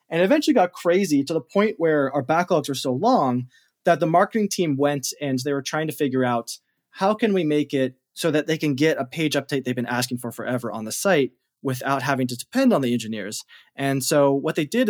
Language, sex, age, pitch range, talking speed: English, male, 20-39, 125-165 Hz, 235 wpm